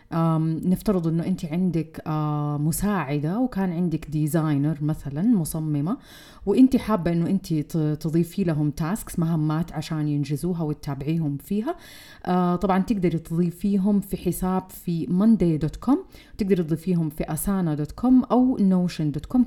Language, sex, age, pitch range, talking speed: Arabic, female, 30-49, 160-210 Hz, 110 wpm